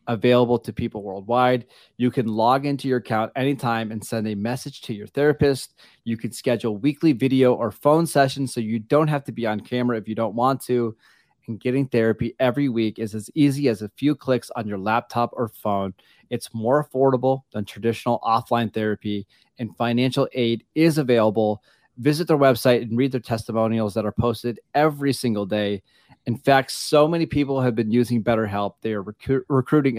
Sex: male